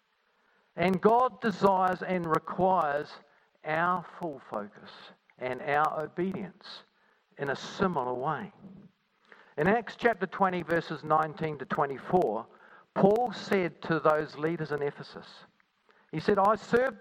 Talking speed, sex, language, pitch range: 120 wpm, male, English, 155-200 Hz